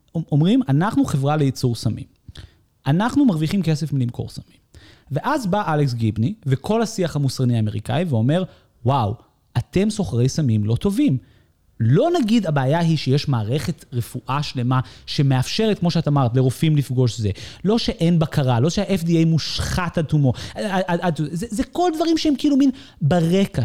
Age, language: 30-49, Hebrew